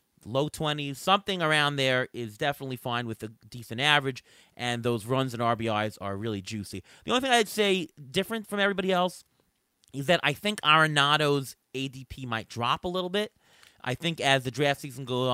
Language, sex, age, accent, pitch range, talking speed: English, male, 30-49, American, 115-150 Hz, 185 wpm